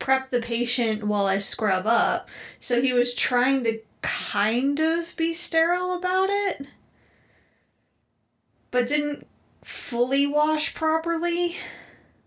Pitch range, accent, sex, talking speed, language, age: 200-260 Hz, American, female, 110 wpm, English, 20-39